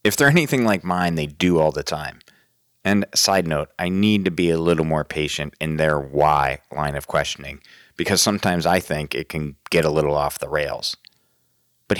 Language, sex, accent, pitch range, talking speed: English, male, American, 80-105 Hz, 200 wpm